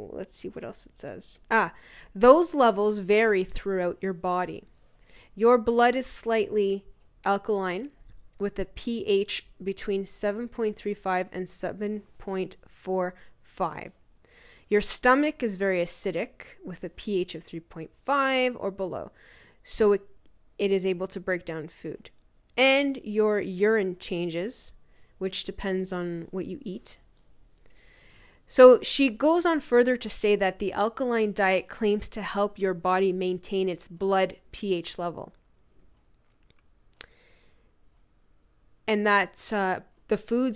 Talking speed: 120 wpm